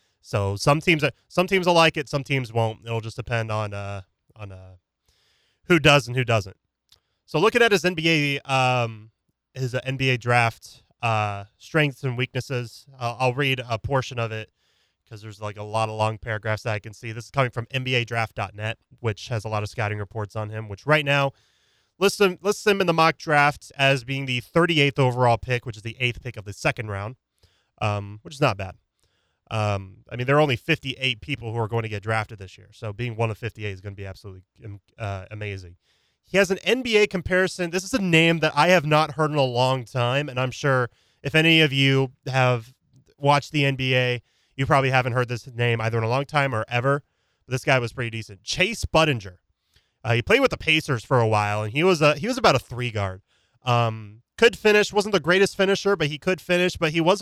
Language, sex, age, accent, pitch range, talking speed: English, male, 20-39, American, 110-145 Hz, 220 wpm